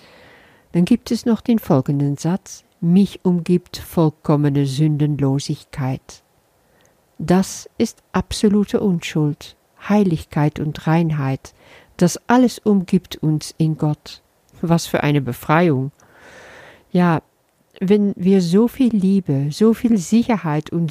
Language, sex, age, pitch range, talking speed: German, female, 50-69, 150-195 Hz, 110 wpm